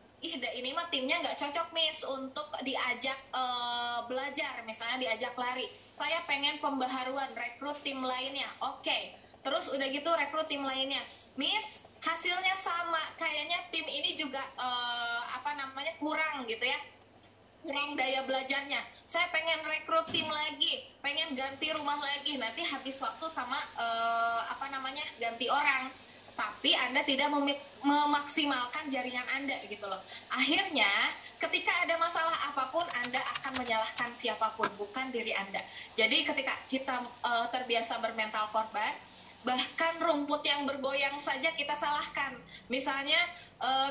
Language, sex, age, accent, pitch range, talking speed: Indonesian, female, 20-39, native, 255-310 Hz, 135 wpm